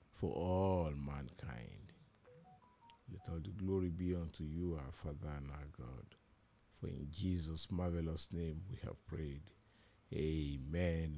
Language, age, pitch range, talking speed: English, 50-69, 85-105 Hz, 130 wpm